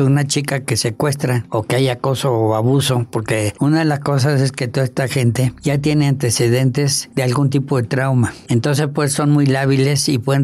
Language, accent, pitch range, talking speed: Spanish, Mexican, 120-140 Hz, 200 wpm